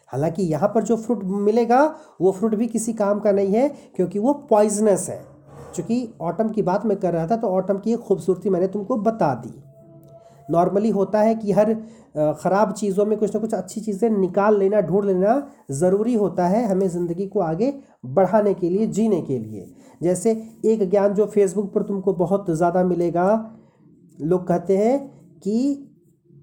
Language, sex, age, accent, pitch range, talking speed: Hindi, male, 40-59, native, 175-220 Hz, 175 wpm